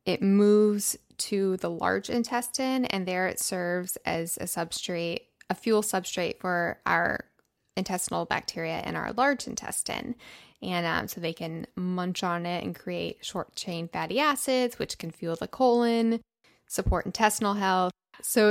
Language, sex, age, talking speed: English, female, 20-39, 150 wpm